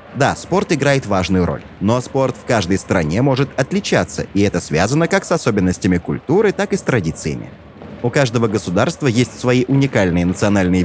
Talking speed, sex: 165 wpm, male